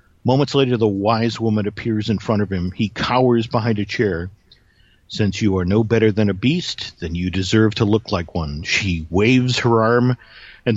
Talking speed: 195 wpm